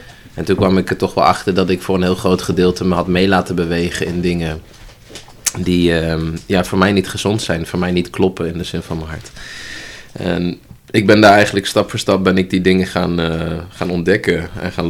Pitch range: 85-90 Hz